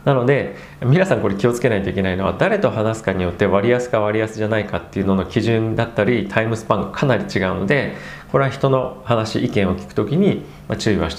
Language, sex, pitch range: Japanese, male, 95-130 Hz